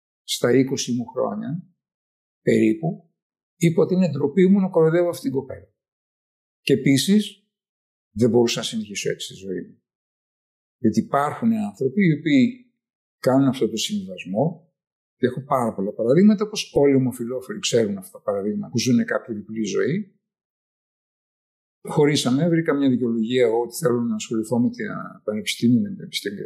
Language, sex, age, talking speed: Greek, male, 50-69, 150 wpm